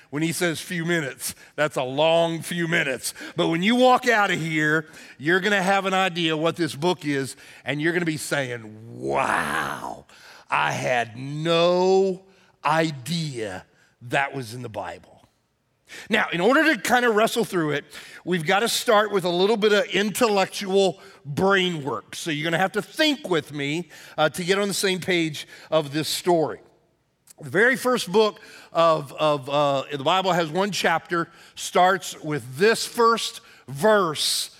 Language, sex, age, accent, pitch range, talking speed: English, male, 40-59, American, 155-215 Hz, 165 wpm